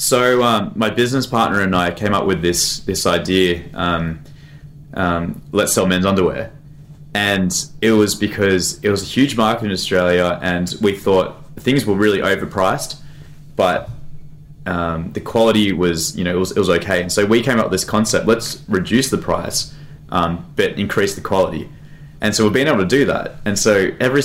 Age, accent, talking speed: 20-39, Australian, 190 wpm